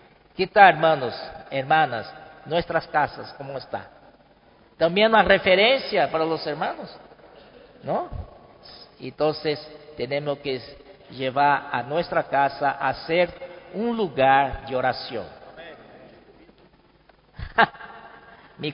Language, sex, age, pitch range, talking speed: Spanish, male, 50-69, 150-235 Hz, 95 wpm